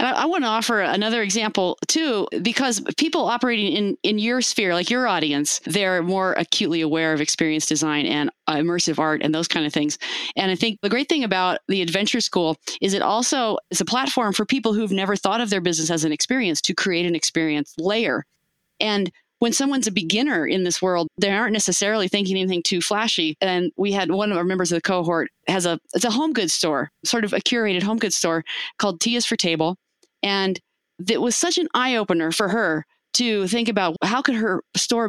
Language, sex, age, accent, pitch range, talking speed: English, female, 30-49, American, 170-235 Hz, 215 wpm